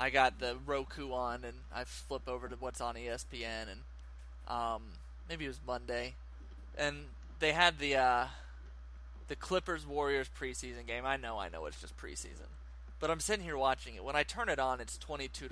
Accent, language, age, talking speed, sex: American, English, 20-39, 185 wpm, male